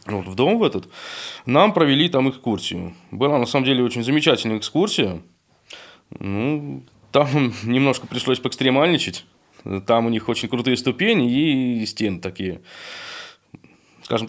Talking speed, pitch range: 130 wpm, 105-135 Hz